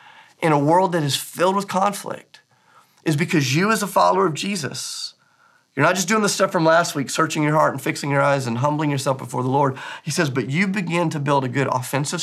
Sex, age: male, 30-49